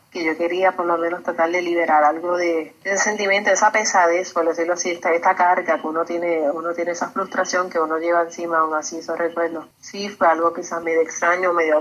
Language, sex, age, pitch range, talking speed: Spanish, female, 30-49, 165-185 Hz, 220 wpm